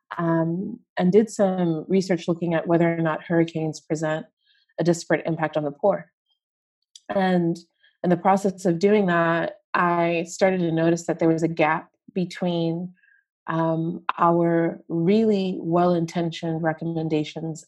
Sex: female